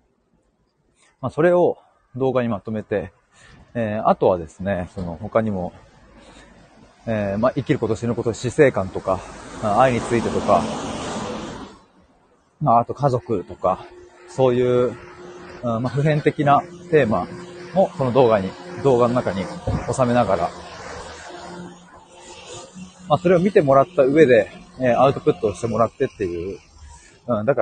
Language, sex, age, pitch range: Japanese, male, 30-49, 110-150 Hz